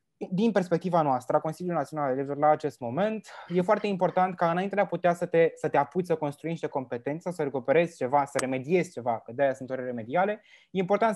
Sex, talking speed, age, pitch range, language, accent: male, 215 wpm, 20-39, 145-185 Hz, Romanian, native